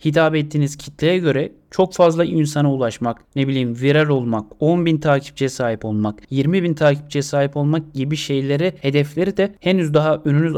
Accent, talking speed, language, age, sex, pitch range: native, 155 wpm, Turkish, 30-49, male, 135-170 Hz